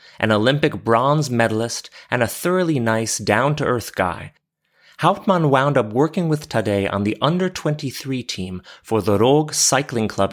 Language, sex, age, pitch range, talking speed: English, male, 30-49, 100-135 Hz, 145 wpm